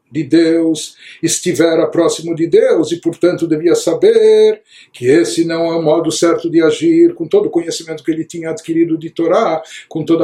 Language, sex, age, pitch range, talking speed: Portuguese, male, 60-79, 160-210 Hz, 180 wpm